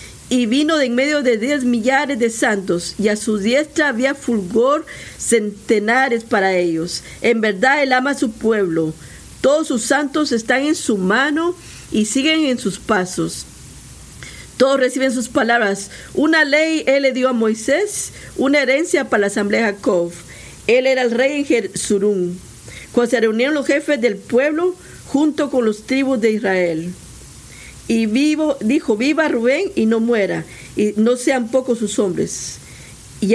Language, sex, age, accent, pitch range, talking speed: Spanish, female, 50-69, American, 210-275 Hz, 160 wpm